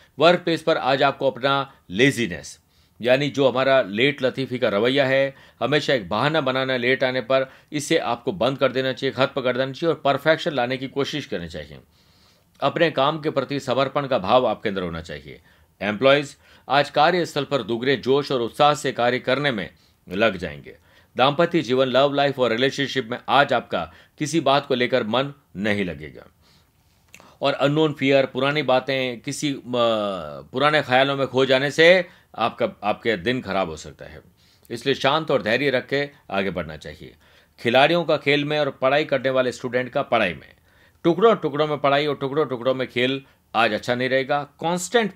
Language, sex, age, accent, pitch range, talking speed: Hindi, male, 50-69, native, 120-145 Hz, 180 wpm